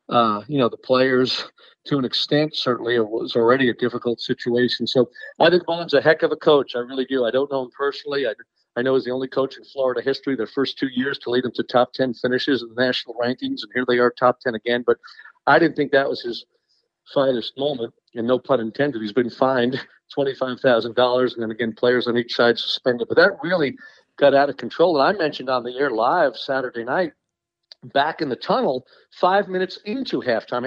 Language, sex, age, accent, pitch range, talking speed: English, male, 50-69, American, 125-165 Hz, 220 wpm